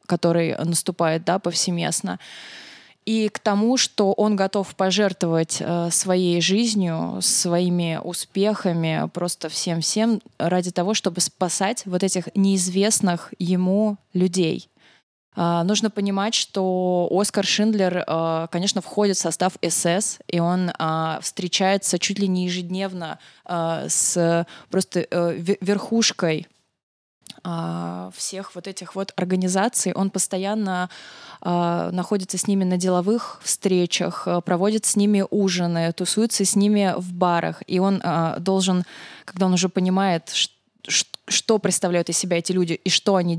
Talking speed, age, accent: 120 wpm, 20-39, native